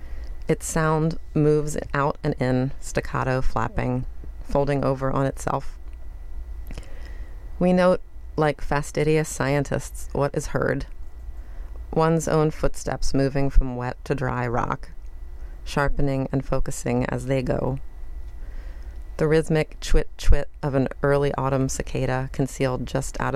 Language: English